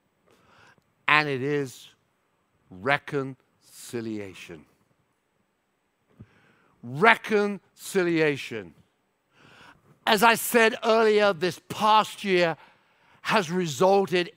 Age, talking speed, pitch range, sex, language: 60-79, 60 wpm, 150-220 Hz, male, English